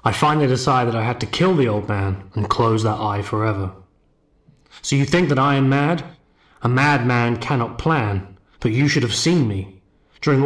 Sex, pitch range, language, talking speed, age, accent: male, 110-140 Hz, English, 195 wpm, 30-49, British